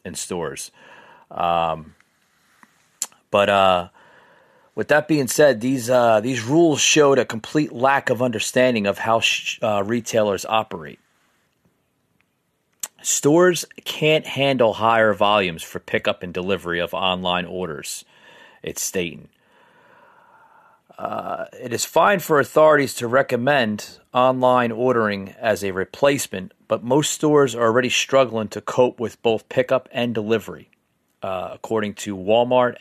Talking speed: 125 wpm